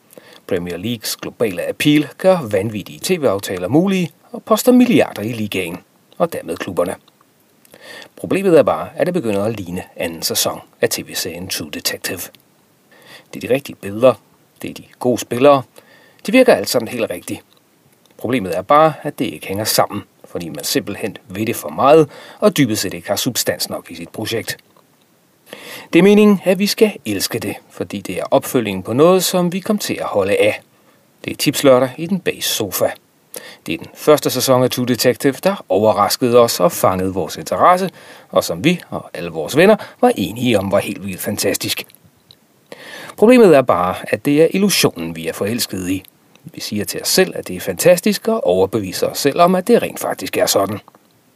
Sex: male